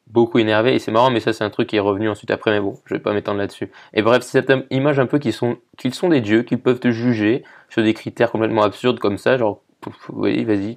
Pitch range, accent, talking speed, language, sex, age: 105-125 Hz, French, 275 wpm, French, male, 20-39